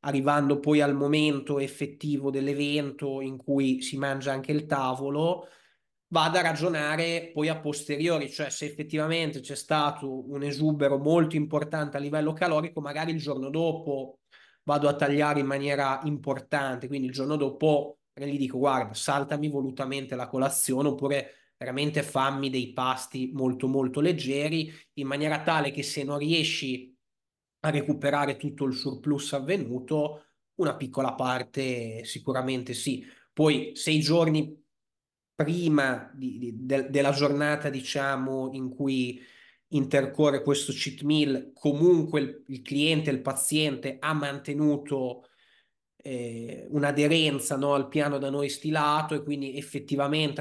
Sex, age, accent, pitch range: male, 20-39, native, 135-150 Hz